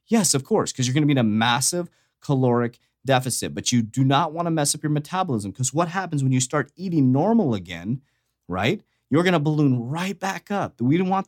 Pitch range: 115-155 Hz